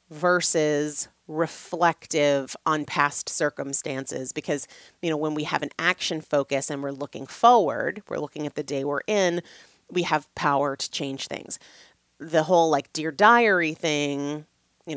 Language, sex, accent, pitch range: English, female, American, 140-165 Hz